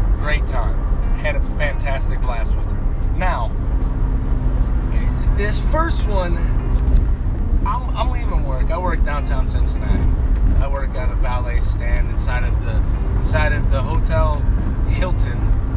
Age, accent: 30-49, American